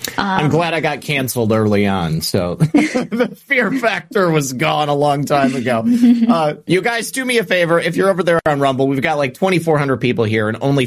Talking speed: 210 wpm